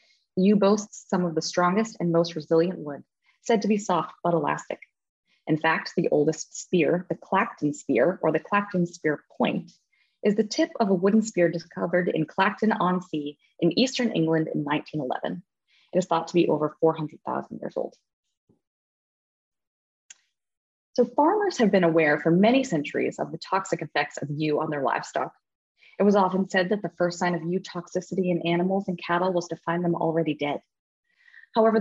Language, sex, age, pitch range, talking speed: English, female, 20-39, 160-210 Hz, 175 wpm